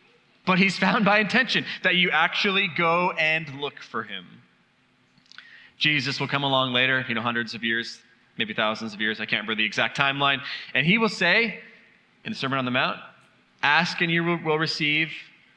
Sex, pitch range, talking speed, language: male, 135-175 Hz, 185 wpm, English